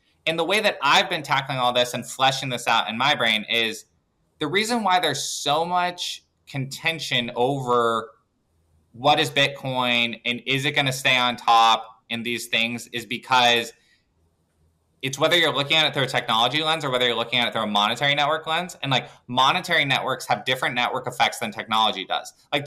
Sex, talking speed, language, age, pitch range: male, 195 wpm, English, 20-39, 115-140 Hz